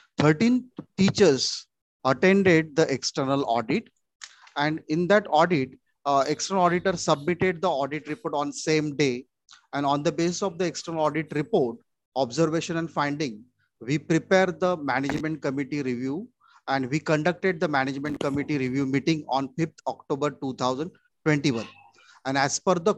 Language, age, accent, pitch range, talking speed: Marathi, 30-49, native, 135-165 Hz, 140 wpm